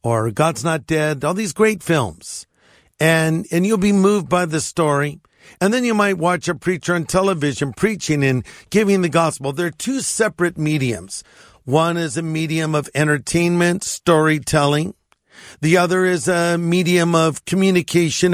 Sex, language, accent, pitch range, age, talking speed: male, English, American, 145-185 Hz, 50-69, 160 wpm